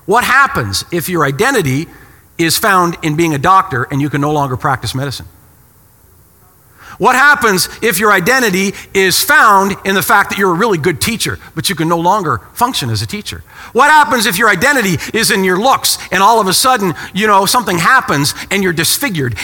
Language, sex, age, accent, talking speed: English, male, 50-69, American, 200 wpm